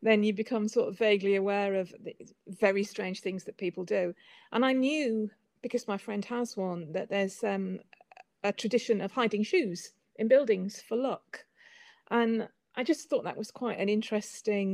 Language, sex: English, female